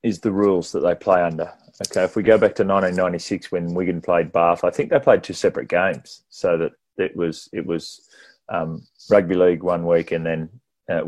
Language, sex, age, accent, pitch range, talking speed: English, male, 30-49, Australian, 85-95 Hz, 220 wpm